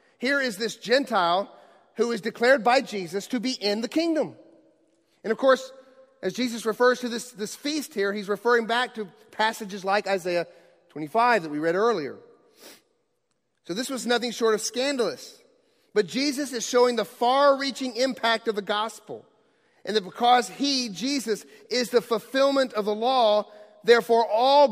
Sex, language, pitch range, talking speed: male, English, 200-265 Hz, 165 wpm